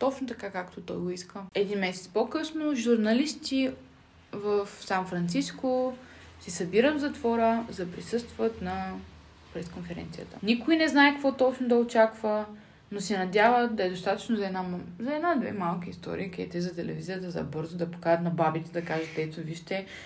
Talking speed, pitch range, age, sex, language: 155 wpm, 175-235 Hz, 20-39, female, Bulgarian